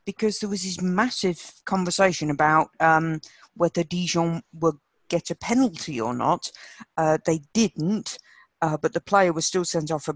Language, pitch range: English, 145-180 Hz